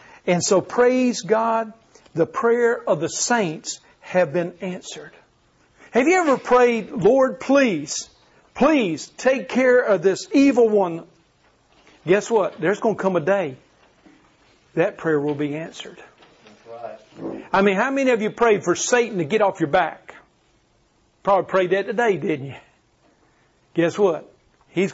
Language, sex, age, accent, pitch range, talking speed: English, male, 50-69, American, 175-230 Hz, 145 wpm